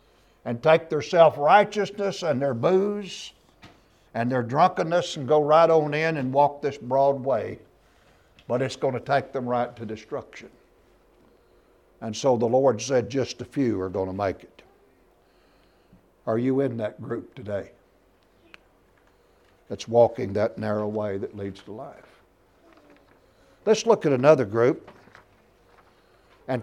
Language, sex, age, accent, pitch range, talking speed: English, male, 60-79, American, 110-145 Hz, 140 wpm